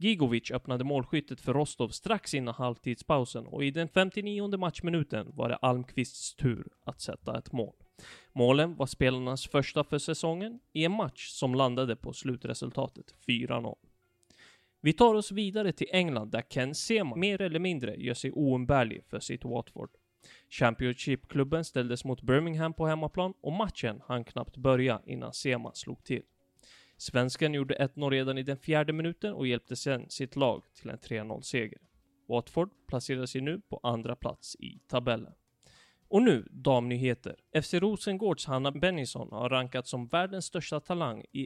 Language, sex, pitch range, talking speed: Swedish, male, 125-160 Hz, 155 wpm